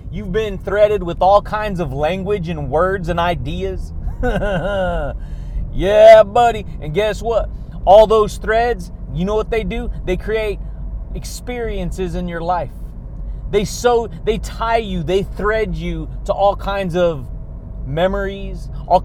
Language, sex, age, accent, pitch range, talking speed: English, male, 30-49, American, 170-215 Hz, 140 wpm